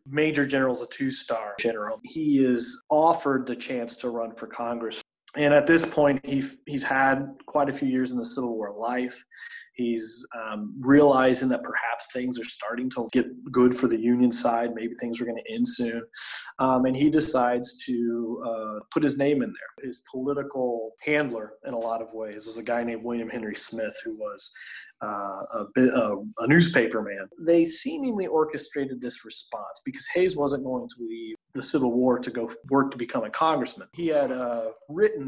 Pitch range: 120-145 Hz